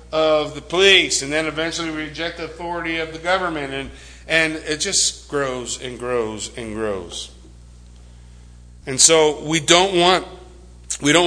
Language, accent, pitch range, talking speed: English, American, 130-165 Hz, 150 wpm